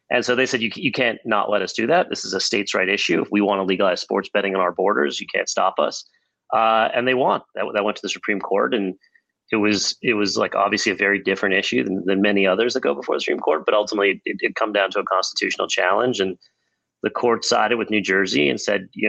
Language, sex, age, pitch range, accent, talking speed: English, male, 30-49, 95-115 Hz, American, 265 wpm